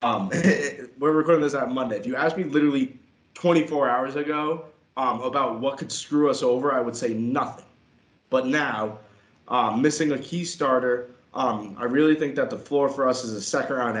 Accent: American